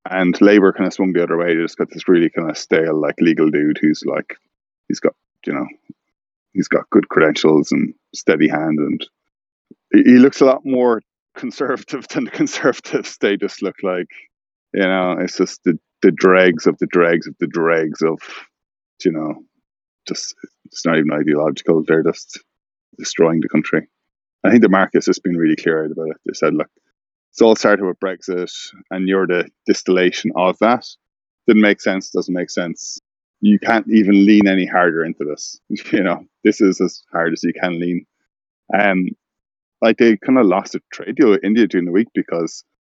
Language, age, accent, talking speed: English, 30-49, Irish, 190 wpm